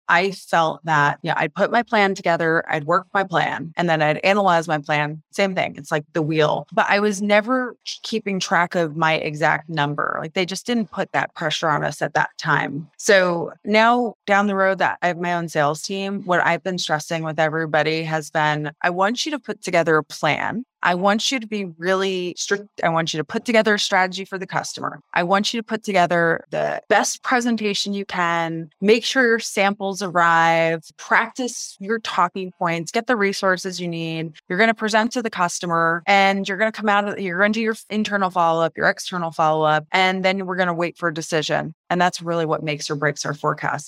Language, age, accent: English, 20-39, American